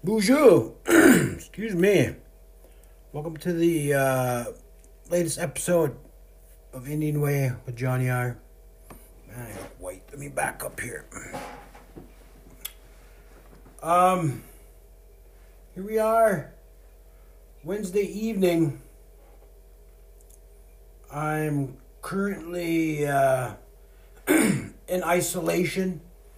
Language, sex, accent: English, male, American